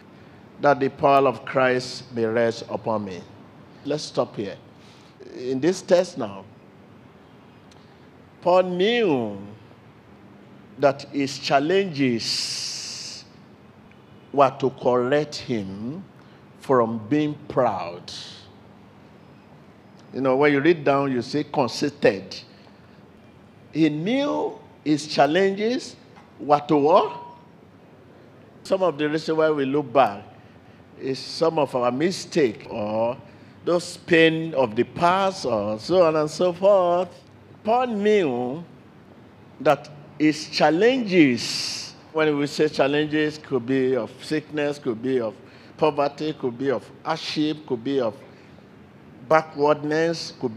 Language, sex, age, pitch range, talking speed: English, male, 50-69, 125-160 Hz, 115 wpm